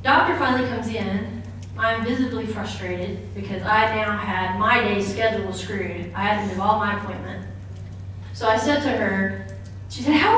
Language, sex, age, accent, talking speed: English, female, 30-49, American, 175 wpm